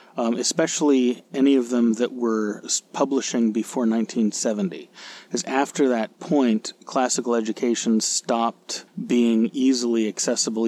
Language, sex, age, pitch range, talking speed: English, male, 30-49, 110-135 Hz, 110 wpm